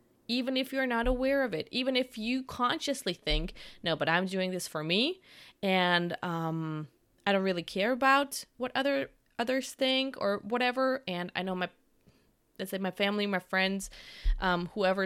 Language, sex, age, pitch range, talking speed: English, female, 20-39, 180-245 Hz, 175 wpm